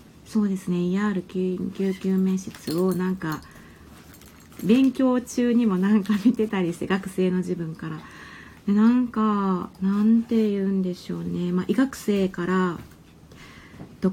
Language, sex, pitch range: Japanese, female, 175-210 Hz